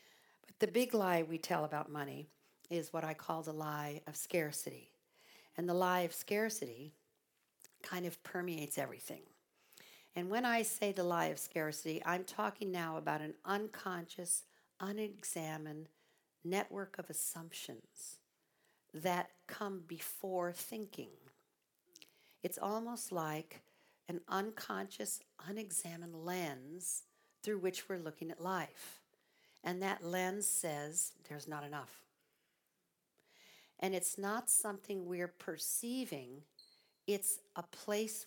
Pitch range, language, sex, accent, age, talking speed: 165-205 Hz, English, female, American, 60-79, 120 wpm